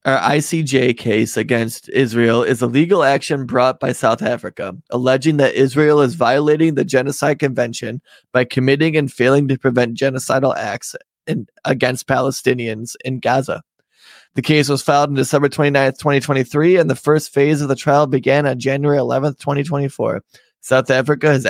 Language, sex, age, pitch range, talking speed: English, male, 20-39, 125-150 Hz, 155 wpm